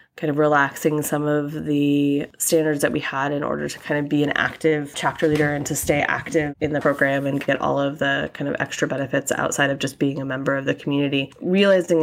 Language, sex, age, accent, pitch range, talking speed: English, female, 20-39, American, 145-165 Hz, 230 wpm